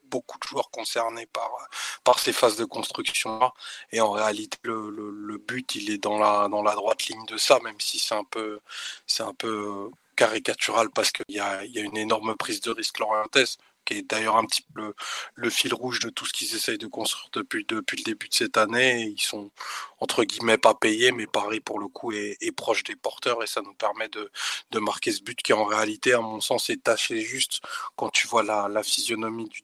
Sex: male